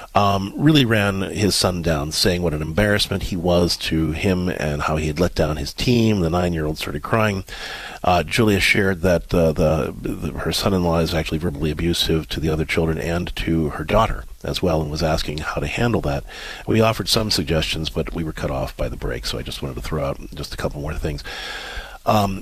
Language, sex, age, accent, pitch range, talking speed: English, male, 40-59, American, 80-110 Hz, 210 wpm